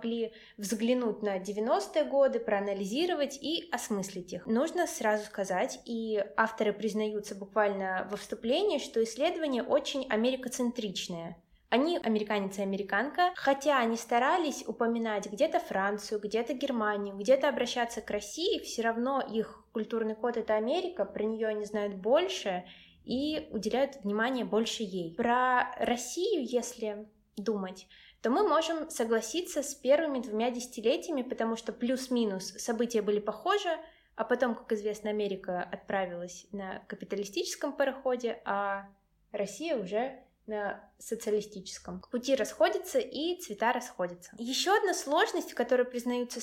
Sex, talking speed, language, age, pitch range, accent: female, 125 wpm, Russian, 20-39, 210-265 Hz, native